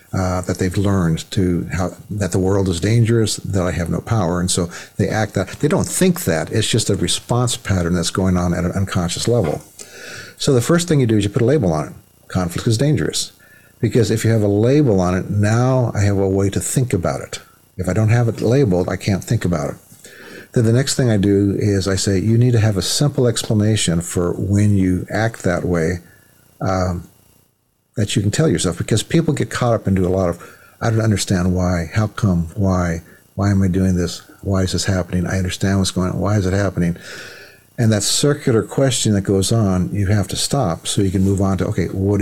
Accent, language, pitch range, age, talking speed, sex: American, English, 90-115 Hz, 60-79, 230 wpm, male